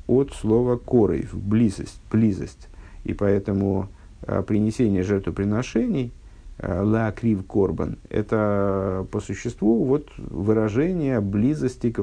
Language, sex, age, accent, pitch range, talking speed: Russian, male, 50-69, native, 90-115 Hz, 105 wpm